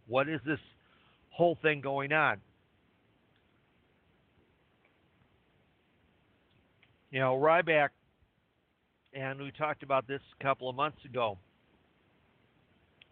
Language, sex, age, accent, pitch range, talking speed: English, male, 50-69, American, 110-140 Hz, 95 wpm